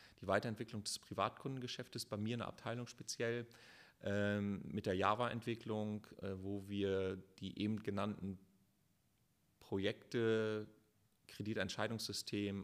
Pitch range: 95-115 Hz